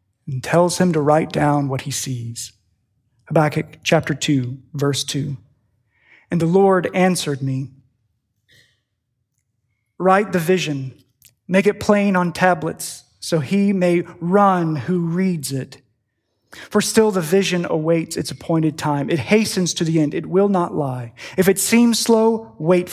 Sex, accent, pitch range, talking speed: male, American, 135-190 Hz, 145 wpm